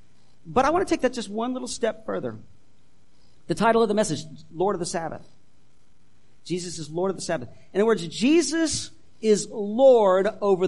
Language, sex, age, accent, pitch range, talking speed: English, male, 50-69, American, 175-260 Hz, 185 wpm